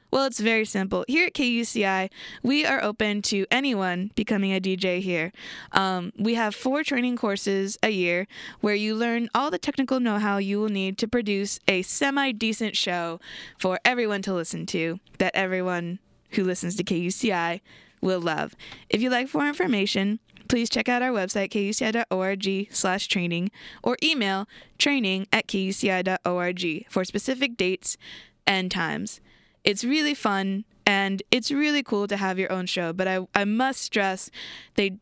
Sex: female